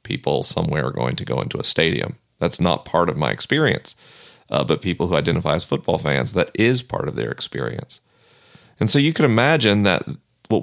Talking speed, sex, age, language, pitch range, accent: 205 wpm, male, 40-59, English, 90-120 Hz, American